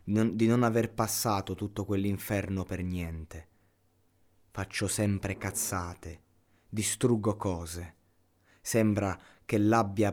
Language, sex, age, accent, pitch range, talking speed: Italian, male, 20-39, native, 85-105 Hz, 95 wpm